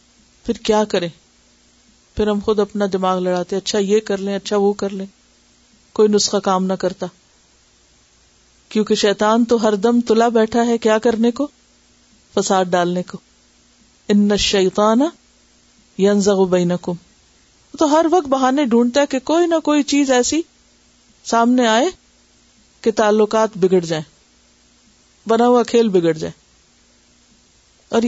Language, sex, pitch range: Urdu, female, 195-270 Hz